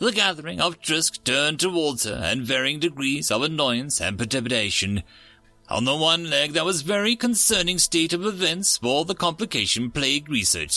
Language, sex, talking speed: English, male, 175 wpm